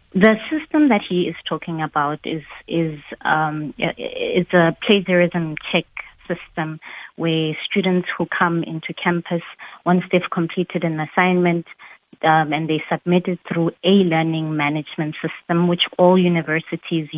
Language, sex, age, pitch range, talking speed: English, female, 30-49, 155-180 Hz, 135 wpm